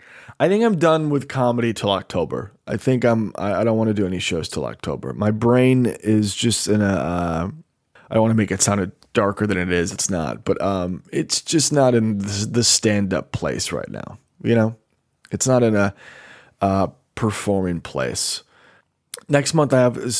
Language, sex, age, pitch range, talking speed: English, male, 20-39, 100-135 Hz, 195 wpm